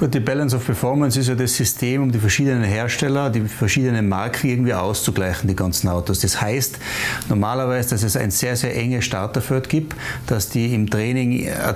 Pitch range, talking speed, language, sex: 115-135 Hz, 190 wpm, German, male